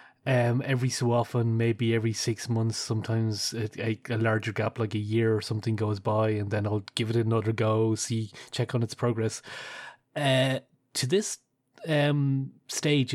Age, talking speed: 30-49, 180 wpm